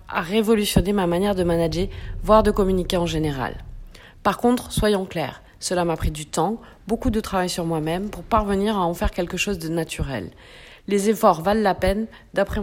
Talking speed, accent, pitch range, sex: 190 wpm, French, 175-225 Hz, female